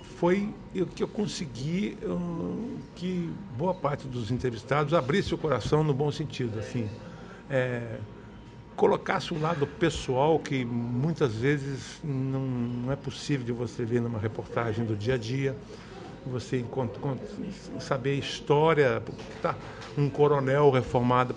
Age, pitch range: 60-79, 125-160 Hz